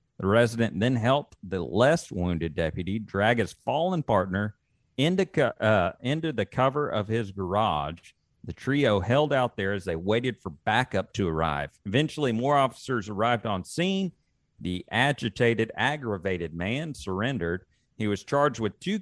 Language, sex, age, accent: English, male, 40-59, American